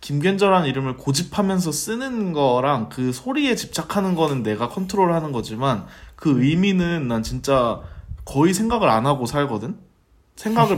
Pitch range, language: 110-155 Hz, Korean